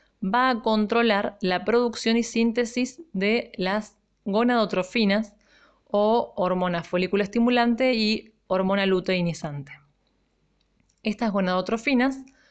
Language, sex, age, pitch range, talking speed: Spanish, female, 20-39, 185-240 Hz, 90 wpm